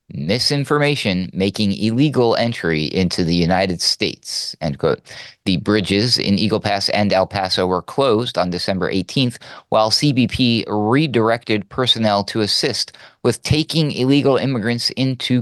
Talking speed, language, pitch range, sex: 130 wpm, English, 90-120 Hz, male